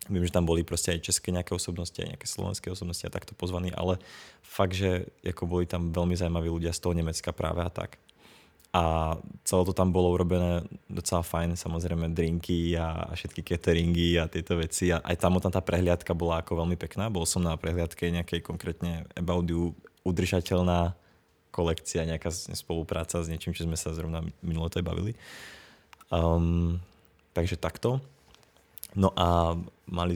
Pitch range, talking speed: 85-95 Hz, 155 wpm